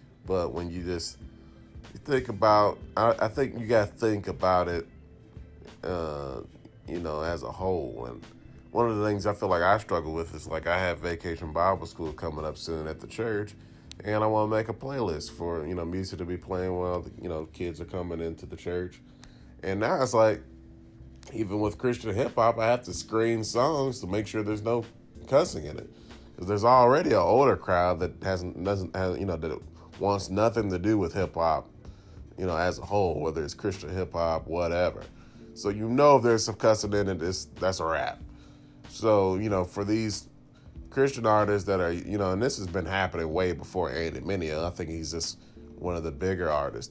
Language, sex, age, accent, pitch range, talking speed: English, male, 30-49, American, 85-110 Hz, 205 wpm